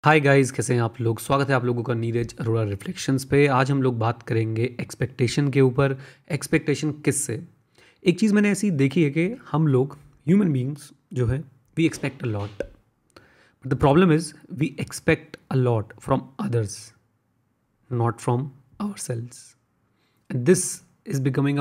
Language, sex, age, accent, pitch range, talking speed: Hindi, male, 30-49, native, 120-150 Hz, 165 wpm